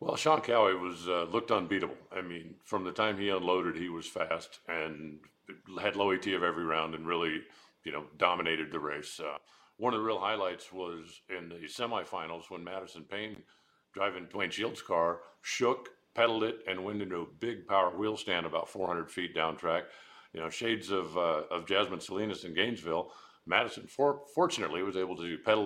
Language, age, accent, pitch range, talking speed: English, 50-69, American, 85-105 Hz, 190 wpm